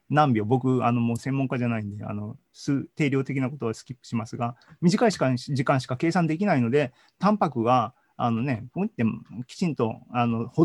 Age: 40-59